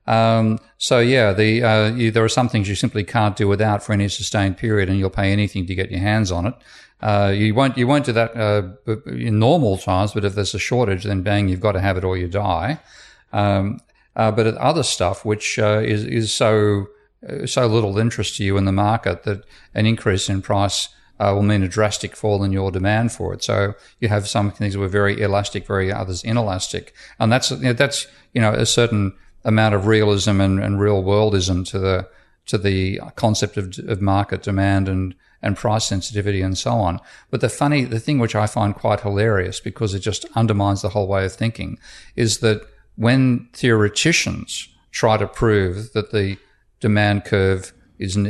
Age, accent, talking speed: 50-69, Australian, 205 wpm